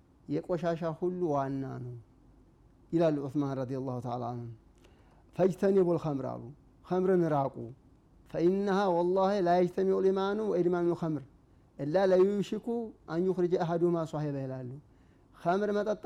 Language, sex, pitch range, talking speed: Amharic, male, 135-180 Hz, 120 wpm